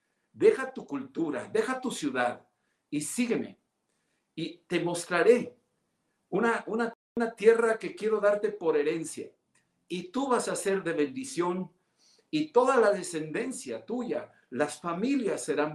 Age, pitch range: 60-79, 165-245 Hz